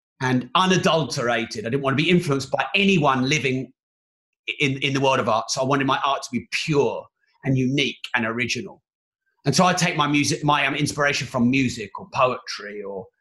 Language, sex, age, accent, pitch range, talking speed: English, male, 30-49, British, 135-190 Hz, 195 wpm